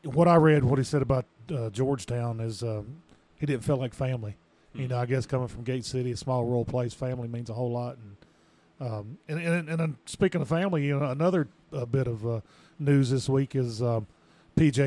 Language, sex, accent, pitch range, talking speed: English, male, American, 115-135 Hz, 220 wpm